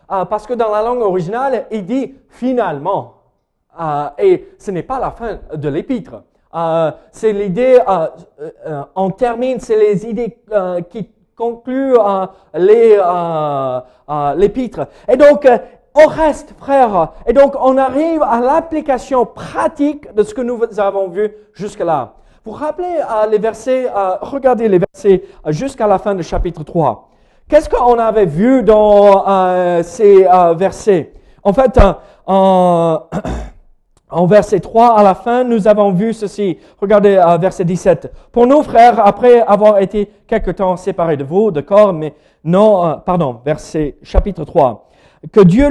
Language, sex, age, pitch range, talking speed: French, male, 40-59, 185-245 Hz, 160 wpm